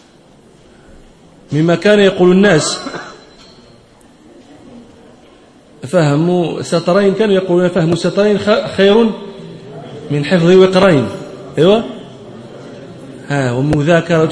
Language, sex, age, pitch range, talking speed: Arabic, male, 40-59, 165-220 Hz, 65 wpm